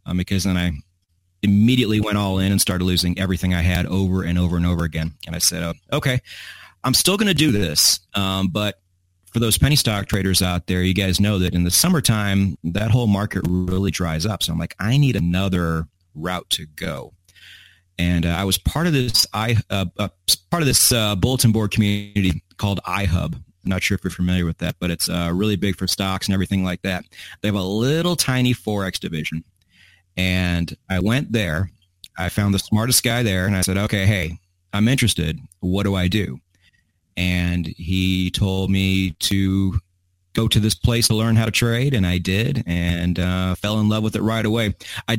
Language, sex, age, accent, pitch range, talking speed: English, male, 30-49, American, 90-110 Hz, 205 wpm